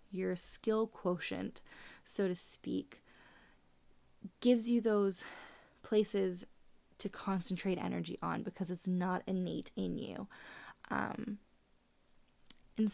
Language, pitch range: English, 185-220 Hz